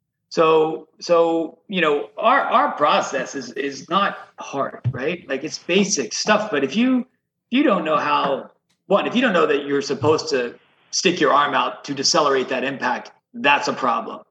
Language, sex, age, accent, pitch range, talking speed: English, male, 40-59, American, 140-200 Hz, 185 wpm